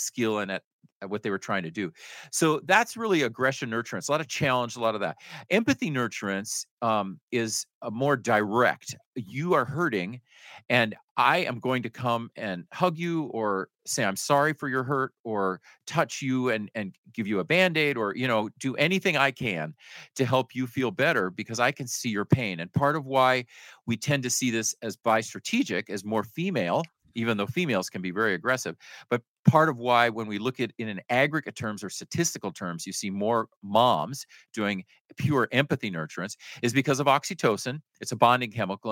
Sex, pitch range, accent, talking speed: male, 105-135 Hz, American, 195 wpm